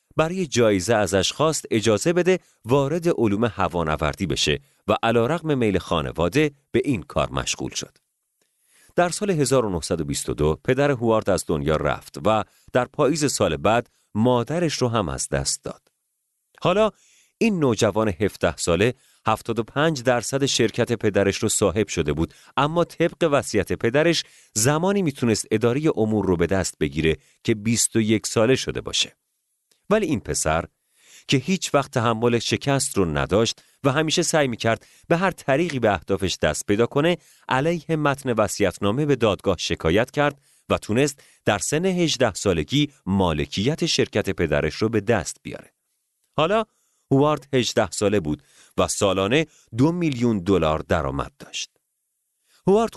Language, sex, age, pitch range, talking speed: Persian, male, 40-59, 100-150 Hz, 140 wpm